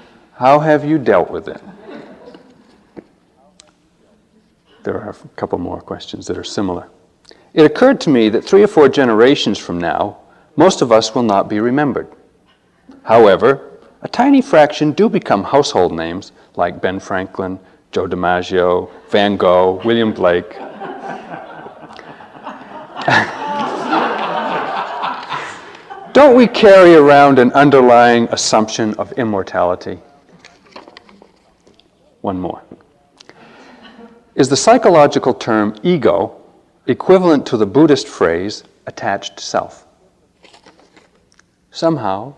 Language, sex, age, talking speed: English, male, 40-59, 105 wpm